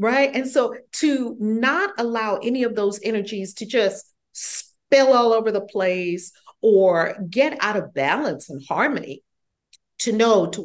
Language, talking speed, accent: English, 150 wpm, American